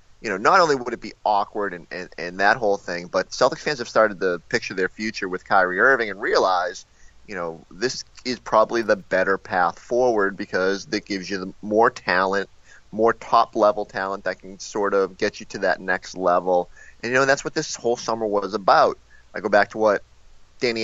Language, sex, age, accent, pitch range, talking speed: English, male, 30-49, American, 100-125 Hz, 220 wpm